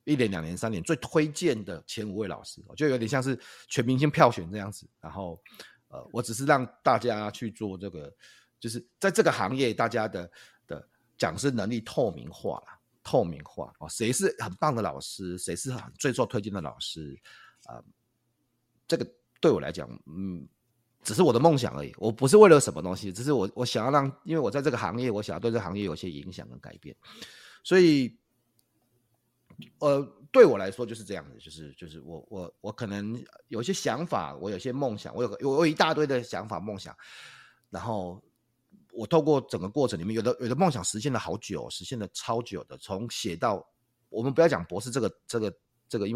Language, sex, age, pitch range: Chinese, male, 30-49, 95-135 Hz